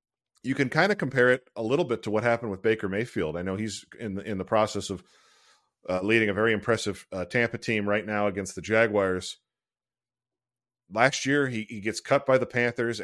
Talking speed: 205 wpm